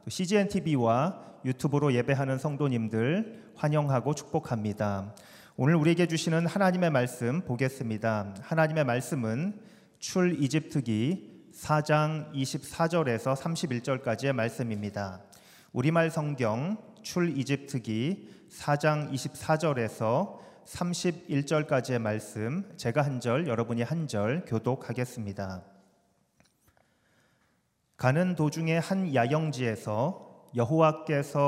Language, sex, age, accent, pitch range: Korean, male, 40-59, native, 120-160 Hz